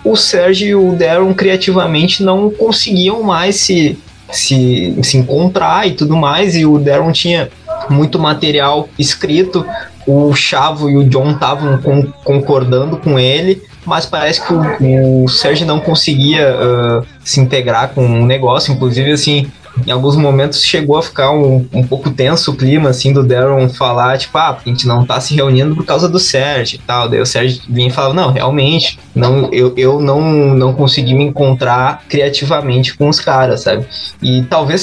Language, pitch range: Portuguese, 130-160 Hz